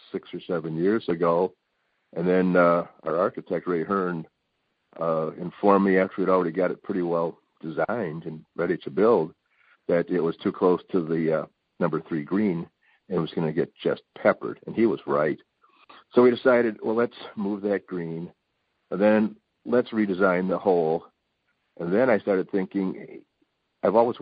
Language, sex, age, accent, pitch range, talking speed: English, male, 50-69, American, 85-100 Hz, 175 wpm